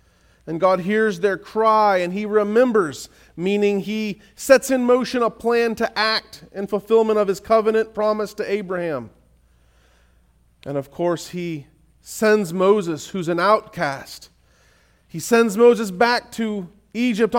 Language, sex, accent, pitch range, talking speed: English, male, American, 155-230 Hz, 140 wpm